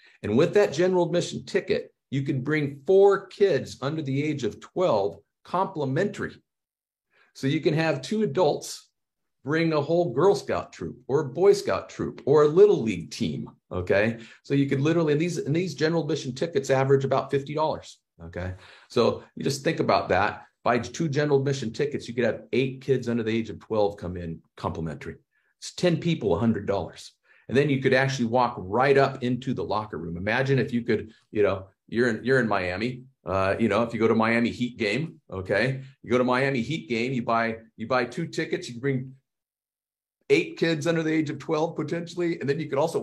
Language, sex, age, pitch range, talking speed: English, male, 50-69, 115-165 Hz, 205 wpm